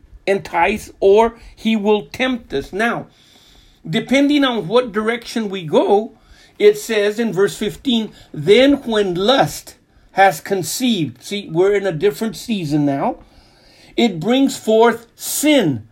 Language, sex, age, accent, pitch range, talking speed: English, male, 50-69, American, 165-225 Hz, 130 wpm